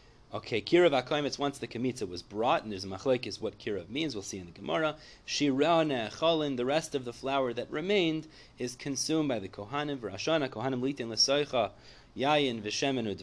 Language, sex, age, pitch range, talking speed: English, male, 30-49, 110-140 Hz, 160 wpm